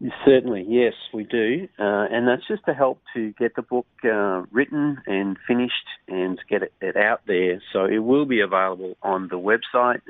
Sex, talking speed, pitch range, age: male, 190 wpm, 95-120 Hz, 40-59